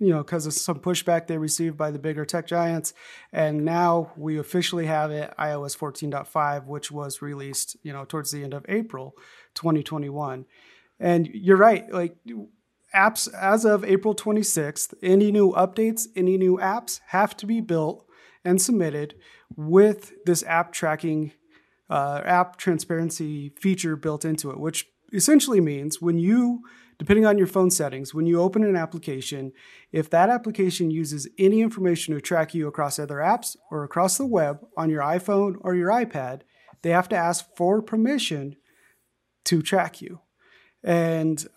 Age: 30-49